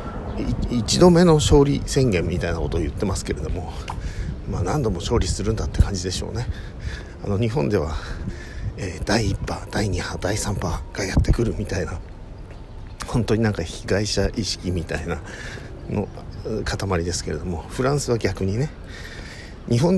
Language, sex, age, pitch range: Japanese, male, 50-69, 85-110 Hz